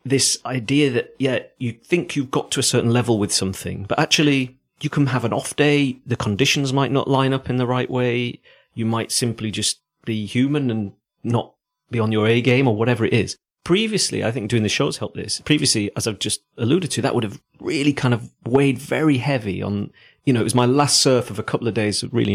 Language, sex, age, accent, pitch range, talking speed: English, male, 40-59, British, 110-140 Hz, 230 wpm